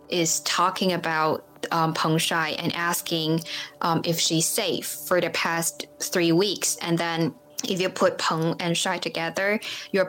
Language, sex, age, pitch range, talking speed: English, female, 10-29, 165-190 Hz, 160 wpm